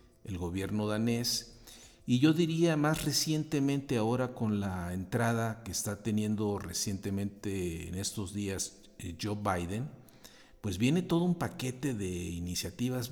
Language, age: Spanish, 50-69